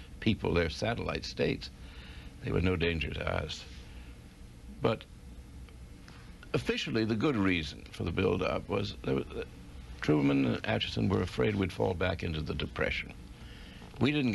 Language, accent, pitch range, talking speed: English, American, 70-100 Hz, 145 wpm